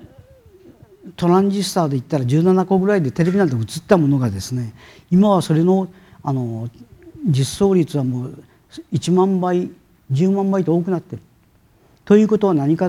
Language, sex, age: Japanese, male, 50-69